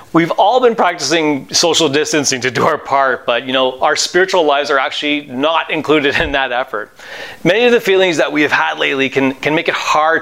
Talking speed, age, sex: 215 wpm, 30-49, male